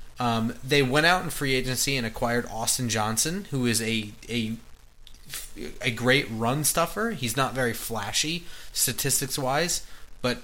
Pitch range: 115-145 Hz